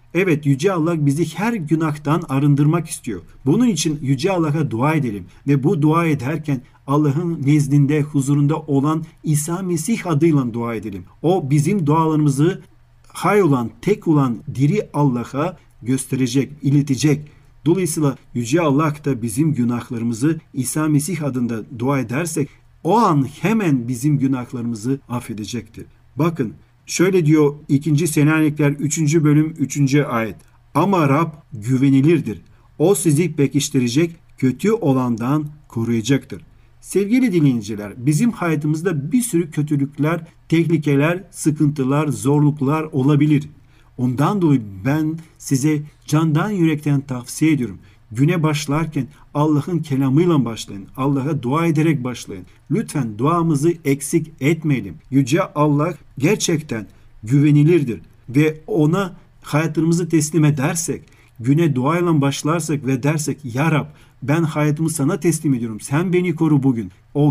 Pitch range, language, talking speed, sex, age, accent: 130-160 Hz, Turkish, 120 wpm, male, 40-59, native